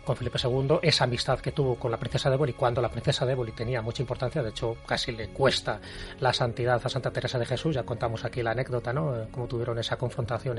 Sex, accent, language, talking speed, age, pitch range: male, Spanish, Spanish, 230 wpm, 30-49, 120-145 Hz